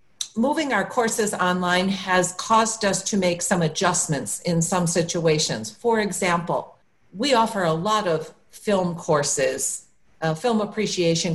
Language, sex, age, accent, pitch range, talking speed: English, female, 50-69, American, 160-195 Hz, 135 wpm